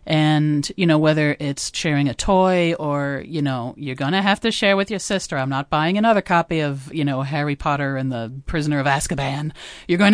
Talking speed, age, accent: 220 wpm, 40-59, American